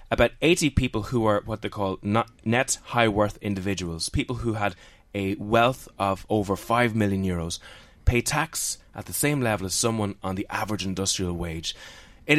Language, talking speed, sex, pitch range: English, 180 wpm, male, 95-120 Hz